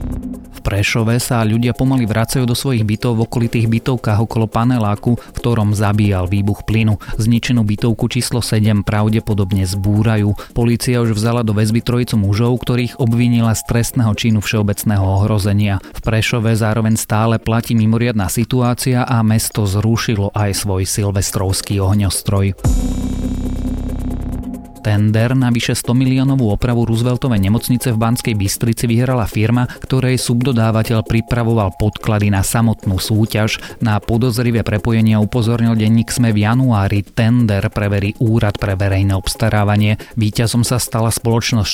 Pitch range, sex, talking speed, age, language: 100-120 Hz, male, 130 wpm, 30-49, Slovak